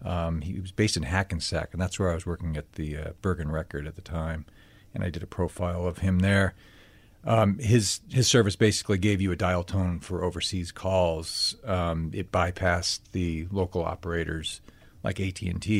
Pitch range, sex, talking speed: 90-105 Hz, male, 185 wpm